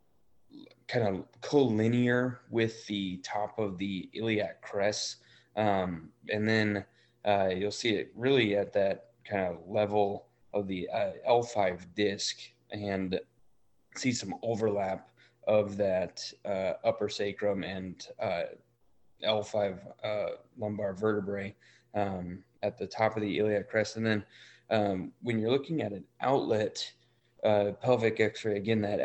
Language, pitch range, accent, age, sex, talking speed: English, 100-110 Hz, American, 20-39, male, 135 wpm